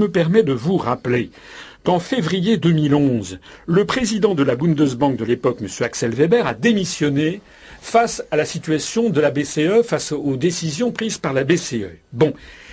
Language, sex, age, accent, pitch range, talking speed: French, male, 50-69, French, 135-210 Hz, 170 wpm